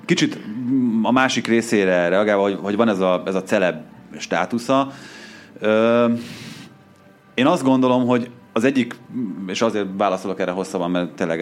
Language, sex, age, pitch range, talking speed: Hungarian, male, 30-49, 85-115 Hz, 145 wpm